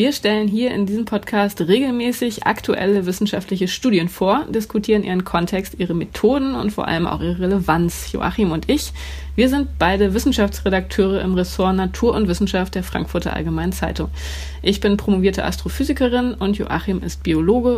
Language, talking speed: German, 155 wpm